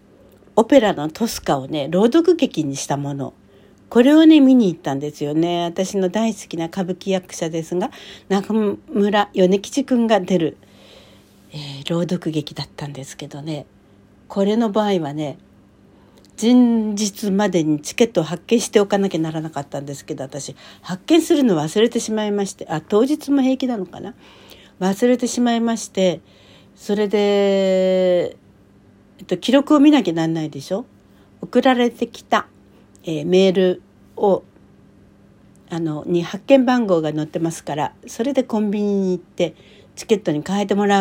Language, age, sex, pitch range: Japanese, 60-79, female, 150-215 Hz